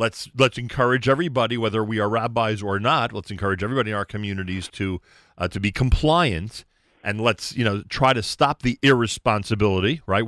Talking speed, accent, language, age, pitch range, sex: 180 wpm, American, English, 40-59, 90-120 Hz, male